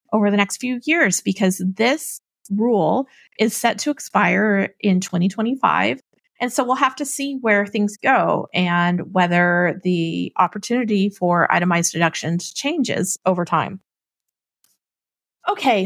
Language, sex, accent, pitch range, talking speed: English, female, American, 180-240 Hz, 130 wpm